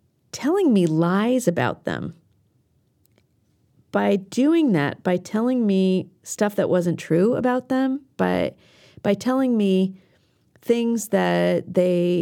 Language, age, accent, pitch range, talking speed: English, 40-59, American, 170-230 Hz, 120 wpm